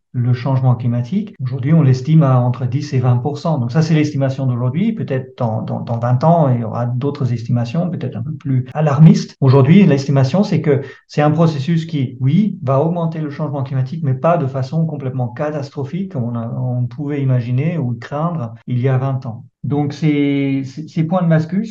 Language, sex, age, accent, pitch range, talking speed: French, male, 50-69, French, 130-160 Hz, 200 wpm